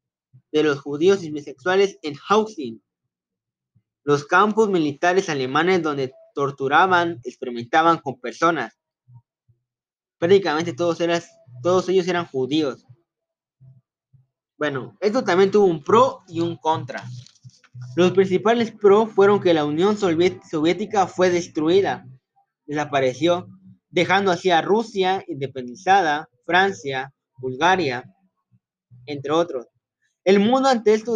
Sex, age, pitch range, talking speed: male, 20-39, 135-195 Hz, 105 wpm